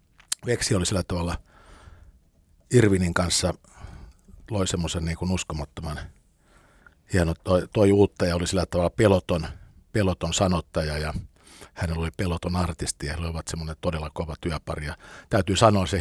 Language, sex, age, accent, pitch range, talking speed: Finnish, male, 50-69, native, 85-100 Hz, 135 wpm